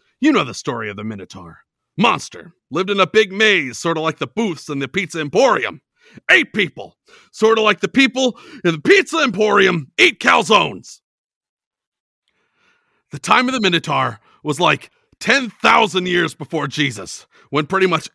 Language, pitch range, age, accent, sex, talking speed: English, 160-250 Hz, 40-59, American, male, 160 wpm